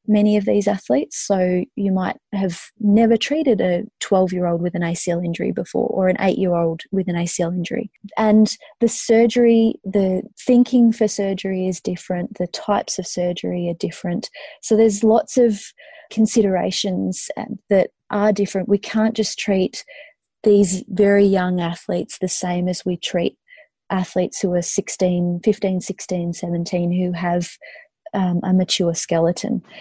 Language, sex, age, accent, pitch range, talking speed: English, female, 30-49, Australian, 180-220 Hz, 155 wpm